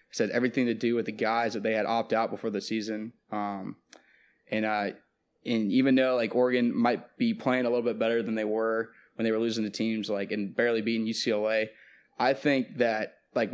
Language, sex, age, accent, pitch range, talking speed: English, male, 20-39, American, 110-125 Hz, 215 wpm